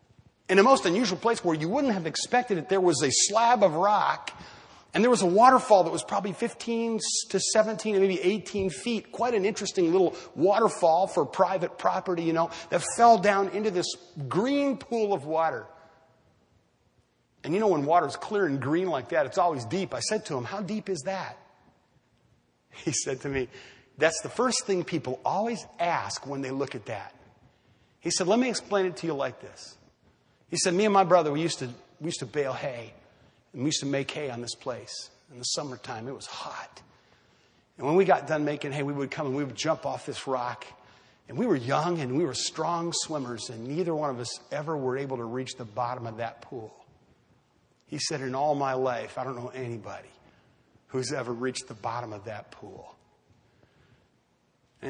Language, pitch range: English, 130-195 Hz